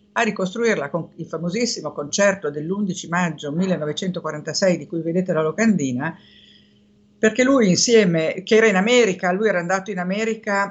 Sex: female